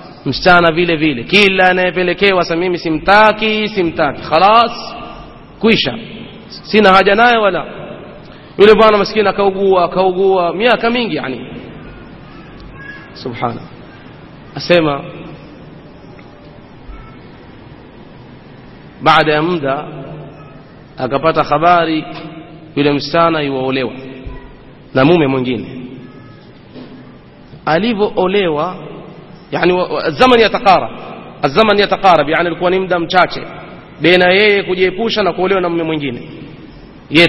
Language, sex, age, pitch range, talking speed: Swahili, male, 30-49, 150-195 Hz, 85 wpm